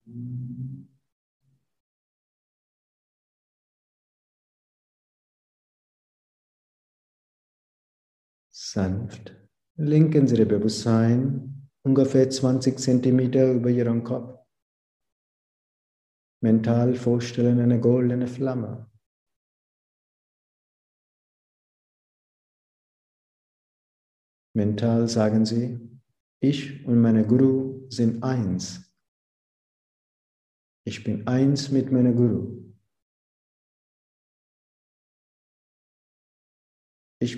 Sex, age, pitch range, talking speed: male, 50-69, 110-130 Hz, 50 wpm